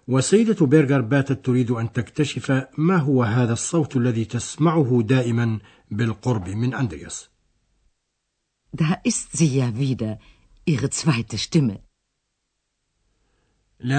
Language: Arabic